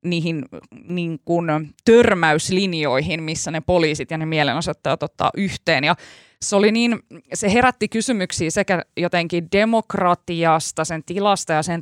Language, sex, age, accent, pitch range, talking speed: Finnish, female, 20-39, native, 155-185 Hz, 125 wpm